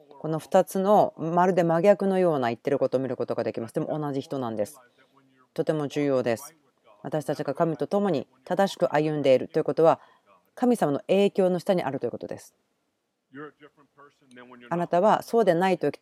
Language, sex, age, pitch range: Japanese, female, 40-59, 130-165 Hz